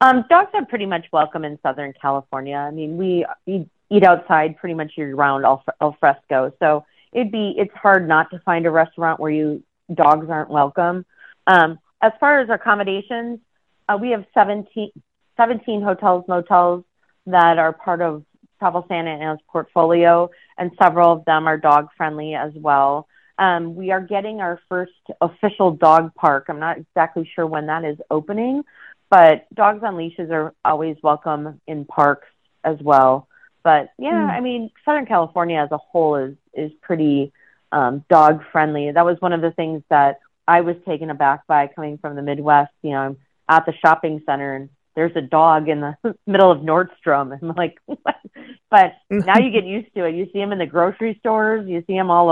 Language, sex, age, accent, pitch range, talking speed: English, female, 30-49, American, 155-195 Hz, 185 wpm